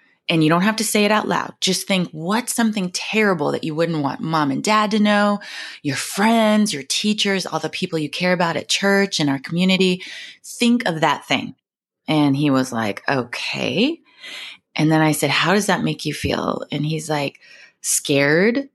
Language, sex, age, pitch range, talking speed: English, female, 20-39, 150-200 Hz, 195 wpm